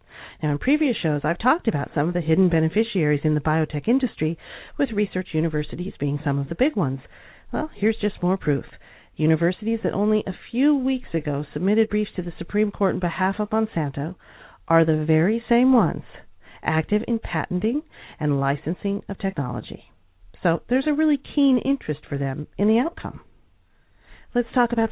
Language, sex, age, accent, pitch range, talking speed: English, female, 40-59, American, 160-225 Hz, 175 wpm